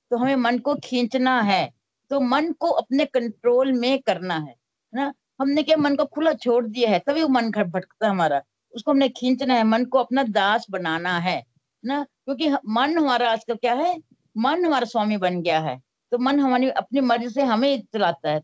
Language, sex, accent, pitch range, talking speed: Hindi, female, native, 205-270 Hz, 200 wpm